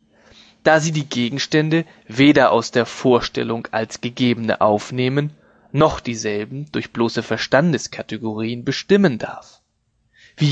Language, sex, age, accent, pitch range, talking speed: German, male, 30-49, German, 120-155 Hz, 110 wpm